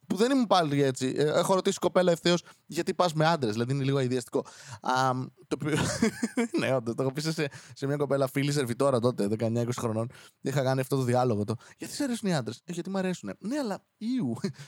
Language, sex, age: Greek, male, 20-39